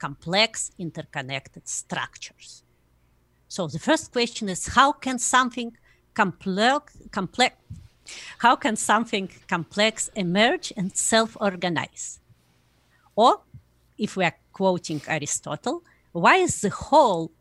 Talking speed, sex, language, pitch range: 105 wpm, female, English, 155-230 Hz